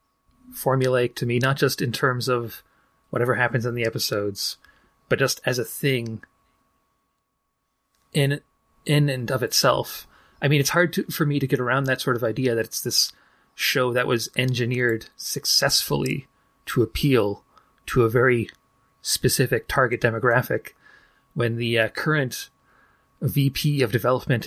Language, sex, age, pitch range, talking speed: English, male, 30-49, 120-140 Hz, 145 wpm